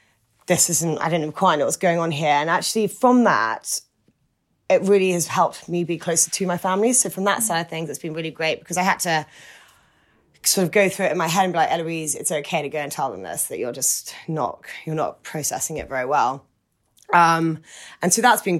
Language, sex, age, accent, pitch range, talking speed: English, female, 20-39, British, 160-190 Hz, 235 wpm